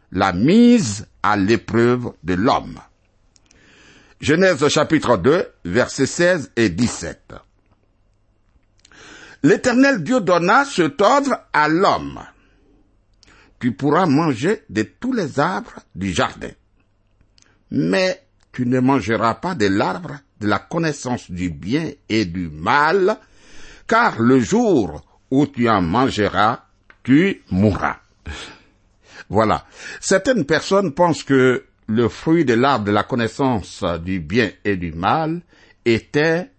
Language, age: French, 60-79